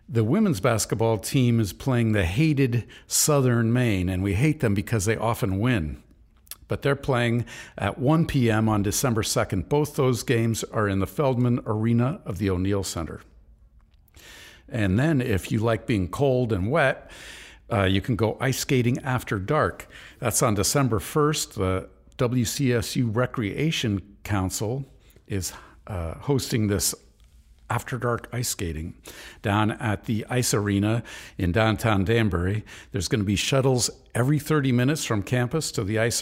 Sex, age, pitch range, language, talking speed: male, 60-79, 100-130 Hz, English, 155 wpm